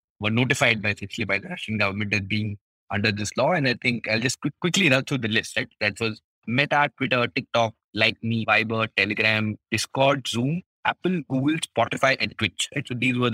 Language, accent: English, Indian